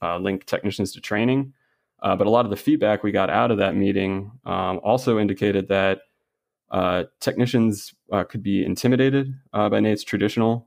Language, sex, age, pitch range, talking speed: English, male, 20-39, 95-110 Hz, 180 wpm